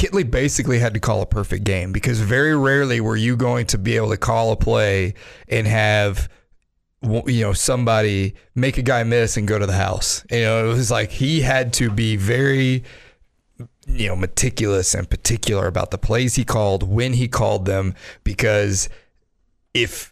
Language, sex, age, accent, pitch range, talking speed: English, male, 30-49, American, 110-130 Hz, 180 wpm